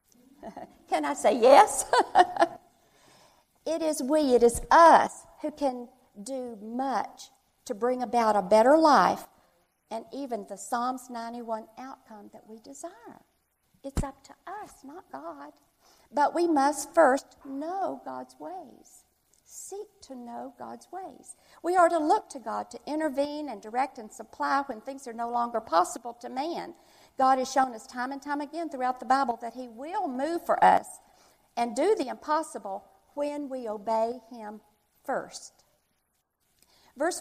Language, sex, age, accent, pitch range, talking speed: English, female, 50-69, American, 240-345 Hz, 150 wpm